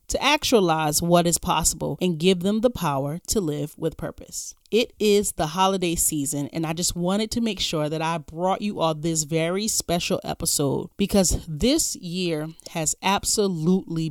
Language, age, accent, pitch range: English, 30-49, American, 160-200 Hz